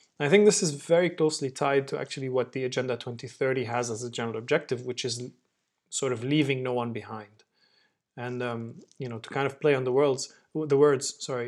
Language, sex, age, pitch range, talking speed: English, male, 30-49, 120-145 Hz, 210 wpm